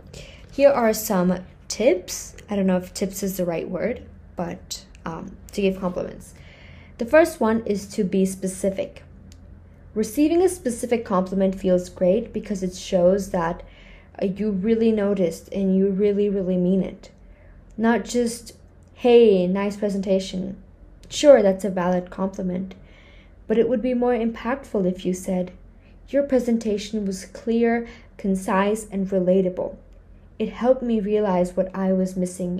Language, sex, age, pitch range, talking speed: English, female, 20-39, 175-215 Hz, 145 wpm